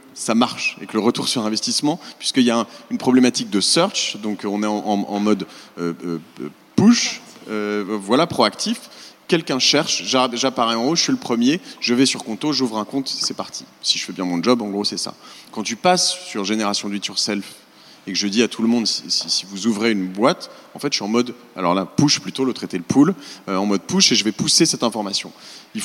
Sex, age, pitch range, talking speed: male, 30-49, 100-150 Hz, 240 wpm